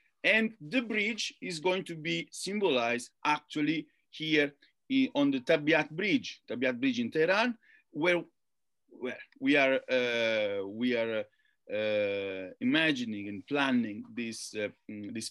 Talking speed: 135 wpm